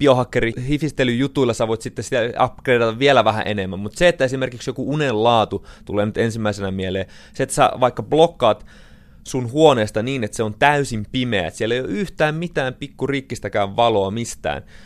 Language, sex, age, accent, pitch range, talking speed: Finnish, male, 30-49, native, 105-130 Hz, 160 wpm